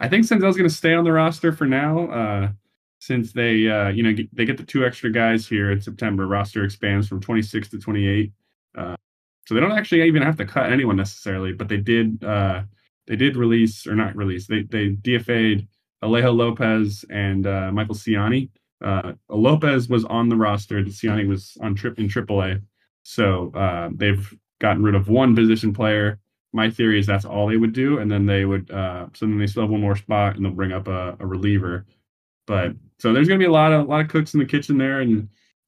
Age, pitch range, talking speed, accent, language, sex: 20-39, 100-120 Hz, 220 wpm, American, English, male